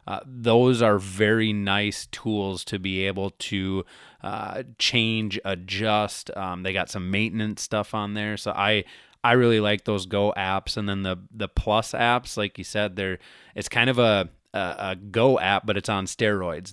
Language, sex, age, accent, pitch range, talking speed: English, male, 20-39, American, 95-110 Hz, 185 wpm